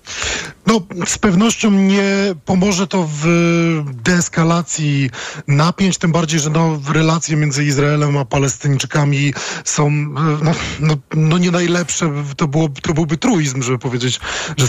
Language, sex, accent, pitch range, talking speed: Polish, male, native, 145-165 Hz, 135 wpm